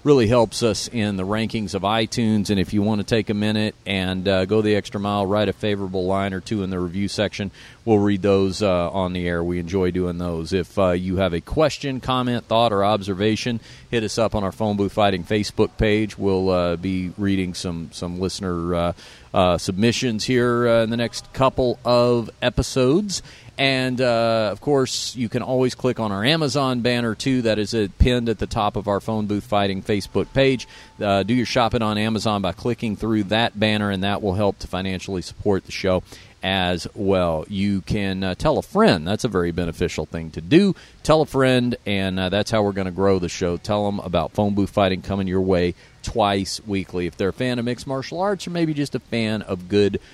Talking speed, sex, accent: 220 wpm, male, American